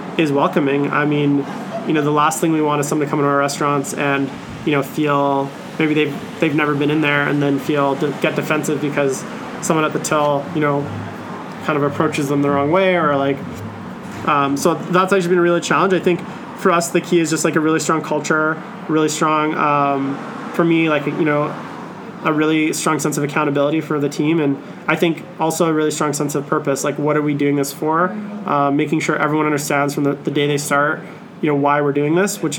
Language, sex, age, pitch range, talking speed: English, male, 20-39, 145-160 Hz, 225 wpm